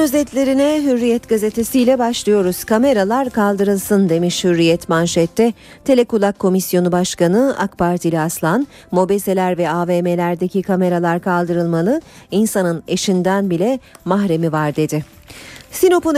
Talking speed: 100 wpm